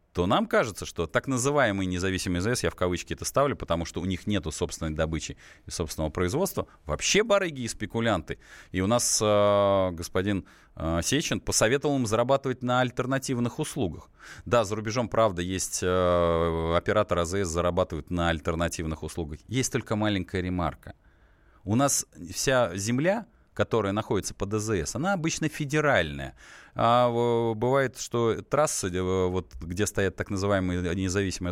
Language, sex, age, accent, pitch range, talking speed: Russian, male, 20-39, native, 85-120 Hz, 145 wpm